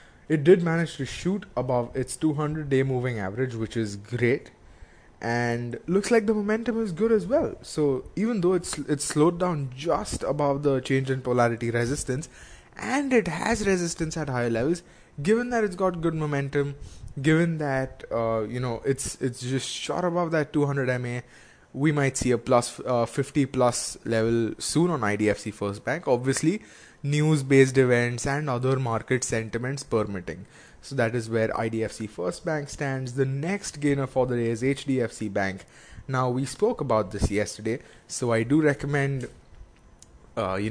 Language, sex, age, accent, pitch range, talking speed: English, male, 20-39, Indian, 115-150 Hz, 170 wpm